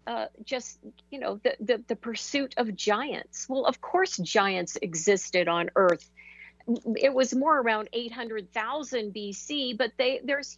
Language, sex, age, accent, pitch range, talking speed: English, female, 50-69, American, 190-240 Hz, 145 wpm